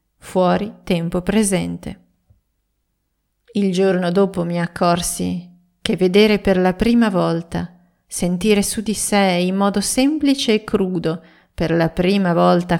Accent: native